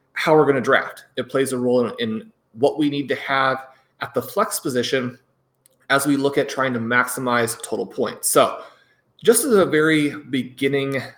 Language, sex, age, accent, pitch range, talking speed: English, male, 30-49, American, 120-140 Hz, 190 wpm